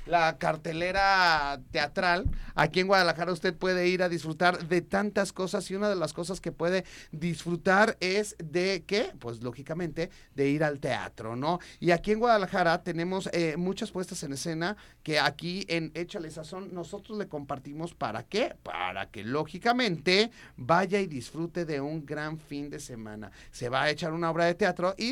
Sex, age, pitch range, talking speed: male, 40-59, 150-185 Hz, 175 wpm